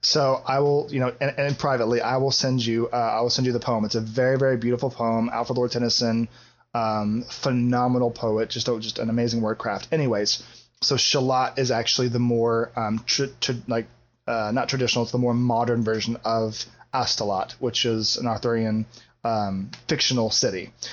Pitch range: 120-145 Hz